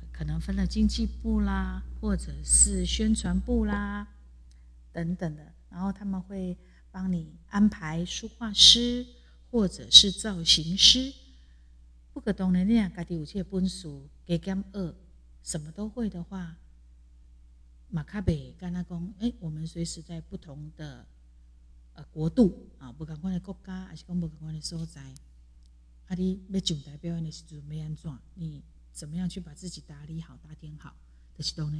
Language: Chinese